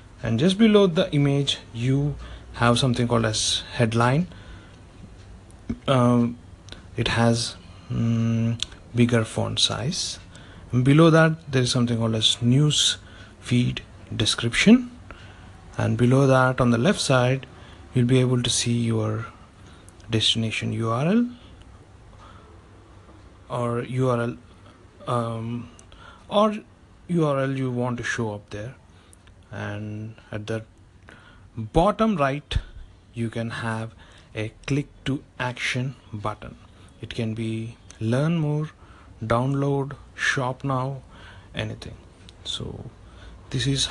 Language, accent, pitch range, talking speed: English, Indian, 95-125 Hz, 105 wpm